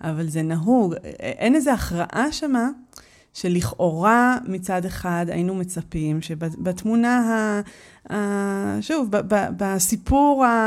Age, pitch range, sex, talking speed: 30-49, 175-225 Hz, female, 100 wpm